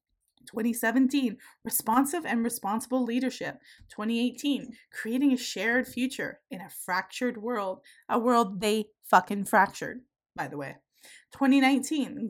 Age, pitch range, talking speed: 20-39, 215-265 Hz, 110 wpm